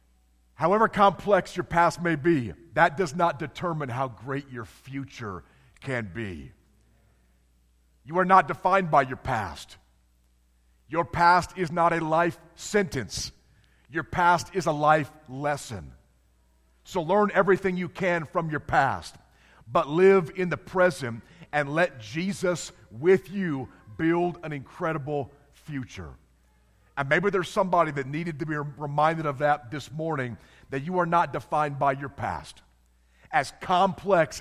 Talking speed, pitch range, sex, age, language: 140 wpm, 110-170 Hz, male, 50-69, English